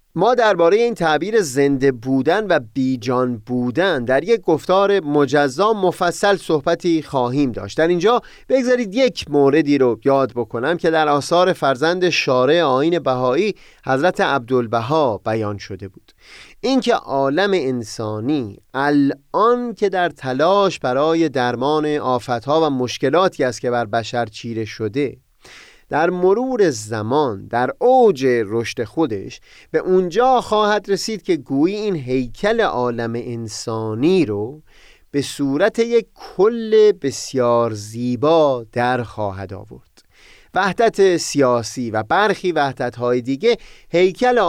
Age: 30-49